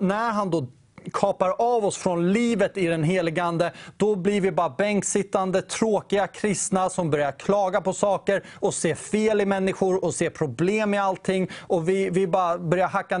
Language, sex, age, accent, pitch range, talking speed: Swedish, male, 30-49, native, 160-195 Hz, 180 wpm